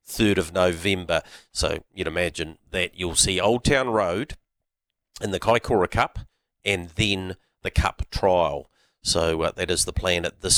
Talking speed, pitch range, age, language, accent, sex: 165 wpm, 85-100 Hz, 40-59, English, Australian, male